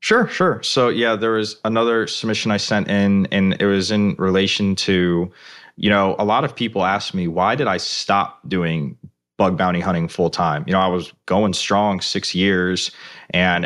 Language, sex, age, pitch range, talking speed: English, male, 20-39, 90-105 Hz, 195 wpm